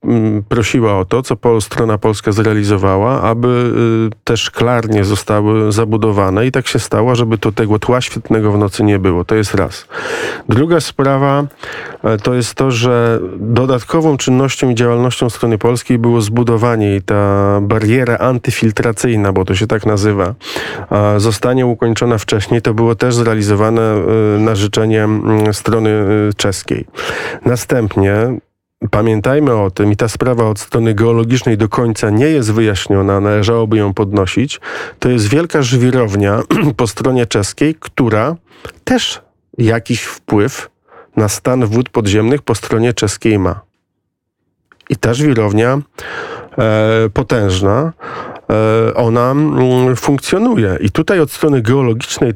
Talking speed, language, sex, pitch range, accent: 125 wpm, Polish, male, 105-125 Hz, native